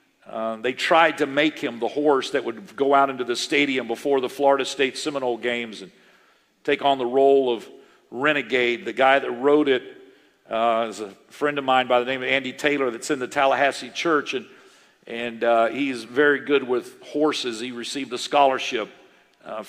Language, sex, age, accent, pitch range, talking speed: English, male, 50-69, American, 130-185 Hz, 190 wpm